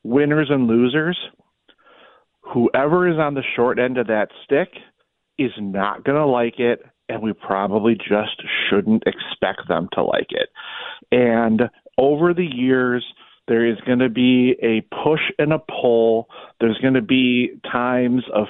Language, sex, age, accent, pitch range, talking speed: English, male, 40-59, American, 115-155 Hz, 155 wpm